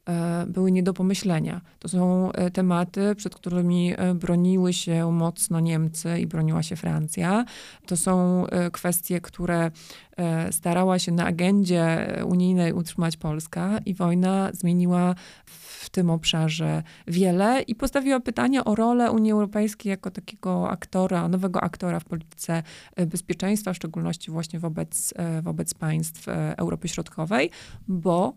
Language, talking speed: Polish, 125 wpm